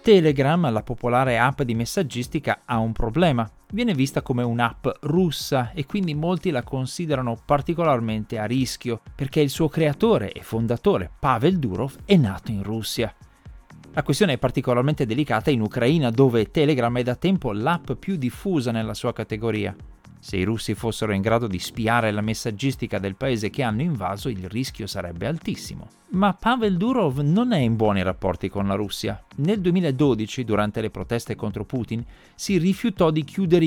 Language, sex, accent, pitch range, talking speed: Italian, male, native, 110-150 Hz, 165 wpm